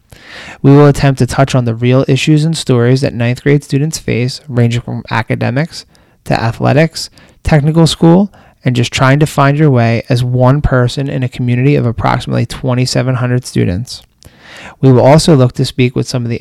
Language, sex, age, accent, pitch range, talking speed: English, male, 20-39, American, 120-145 Hz, 185 wpm